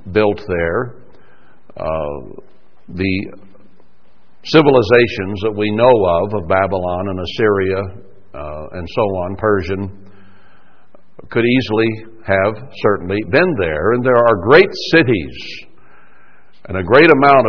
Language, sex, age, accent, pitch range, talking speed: English, male, 60-79, American, 100-130 Hz, 115 wpm